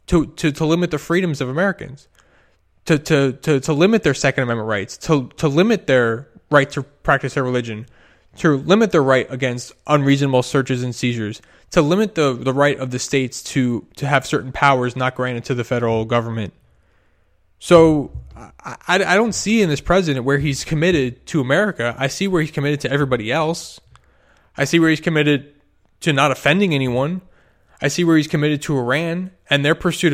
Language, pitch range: English, 125-160 Hz